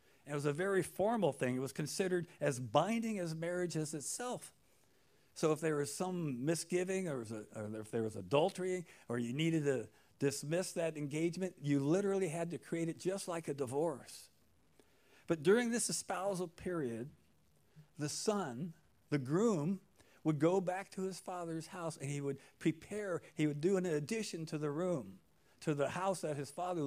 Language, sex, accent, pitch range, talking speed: English, male, American, 145-180 Hz, 170 wpm